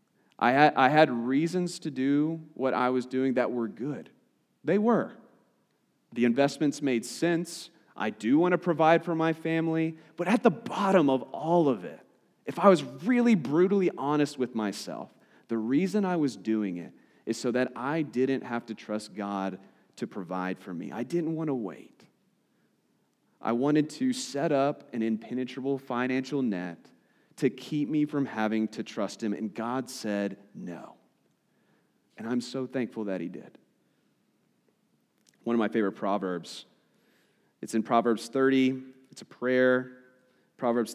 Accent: American